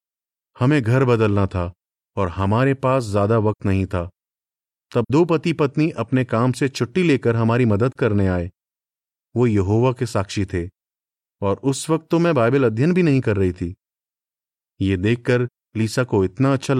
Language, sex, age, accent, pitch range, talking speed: Hindi, male, 30-49, native, 105-145 Hz, 170 wpm